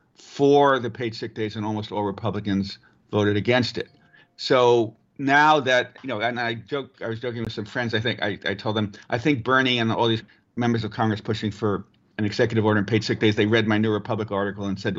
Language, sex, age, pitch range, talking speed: English, male, 50-69, 105-120 Hz, 230 wpm